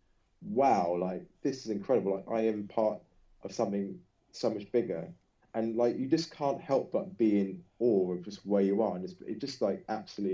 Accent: British